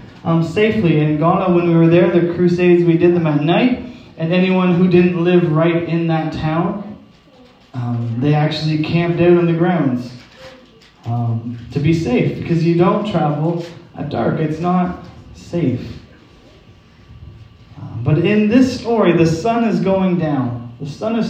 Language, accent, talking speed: English, American, 165 wpm